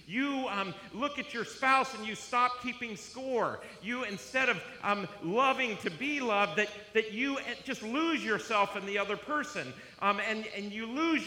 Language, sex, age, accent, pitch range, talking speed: English, male, 50-69, American, 175-265 Hz, 180 wpm